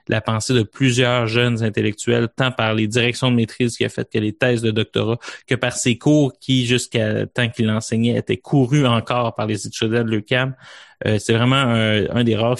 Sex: male